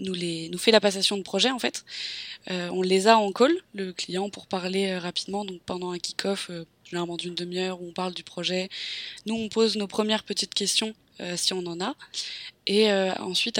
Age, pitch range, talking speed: 20-39, 175-205 Hz, 220 wpm